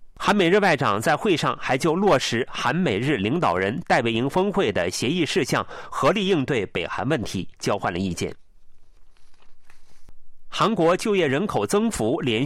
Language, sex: Chinese, male